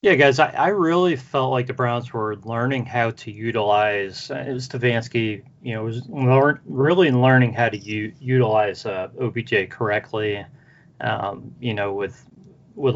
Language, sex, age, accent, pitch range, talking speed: English, male, 30-49, American, 110-135 Hz, 155 wpm